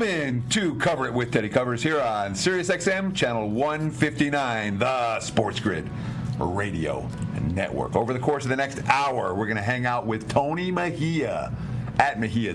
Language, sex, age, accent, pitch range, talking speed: English, male, 50-69, American, 110-145 Hz, 165 wpm